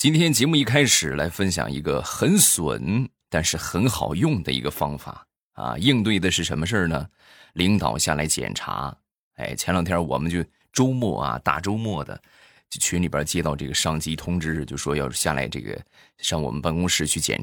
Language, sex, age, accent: Chinese, male, 20-39, native